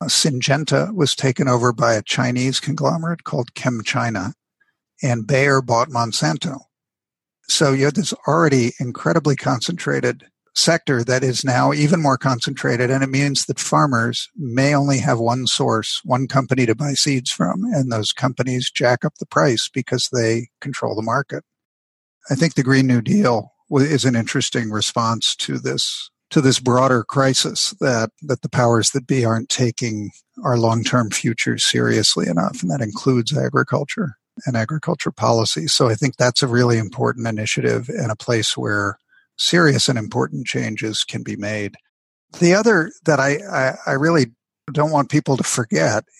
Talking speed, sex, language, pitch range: 160 wpm, male, English, 120-145 Hz